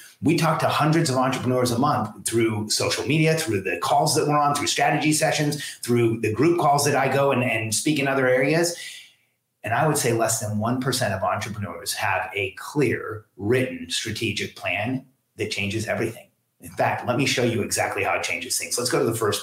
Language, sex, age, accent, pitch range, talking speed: English, male, 30-49, American, 115-150 Hz, 205 wpm